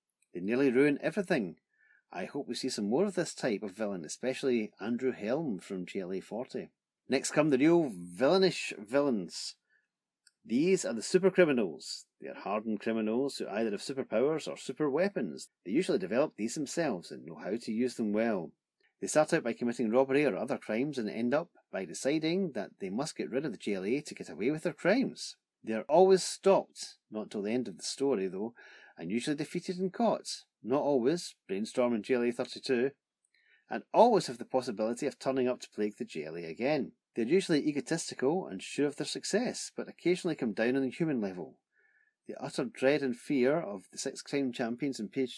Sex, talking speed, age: male, 195 wpm, 40-59